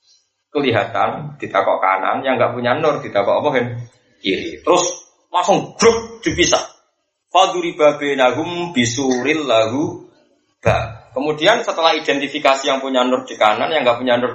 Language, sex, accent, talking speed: Indonesian, male, native, 115 wpm